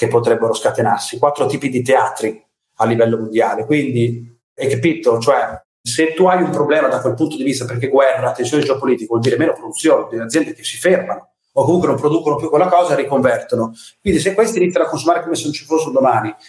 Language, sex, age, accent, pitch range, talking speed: Italian, male, 40-59, native, 120-180 Hz, 210 wpm